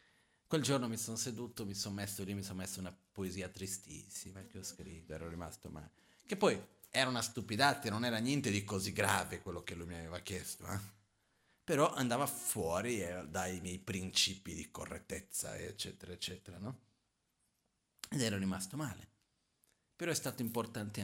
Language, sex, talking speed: Italian, male, 165 wpm